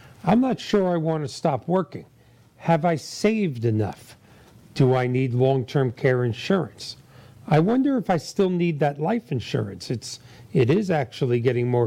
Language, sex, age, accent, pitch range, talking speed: English, male, 40-59, American, 120-165 Hz, 160 wpm